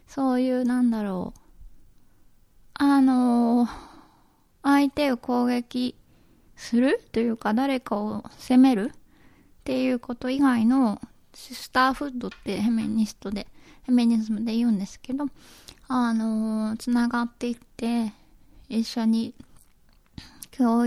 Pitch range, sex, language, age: 220-260 Hz, female, Japanese, 20-39